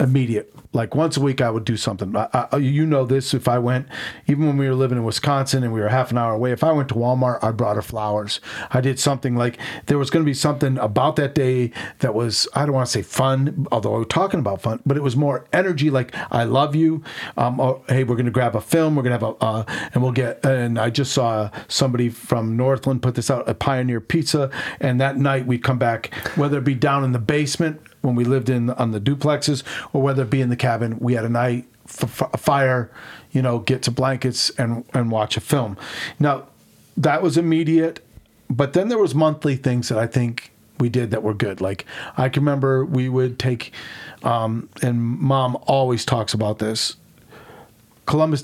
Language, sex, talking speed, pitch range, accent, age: English, male, 225 wpm, 120-140 Hz, American, 40-59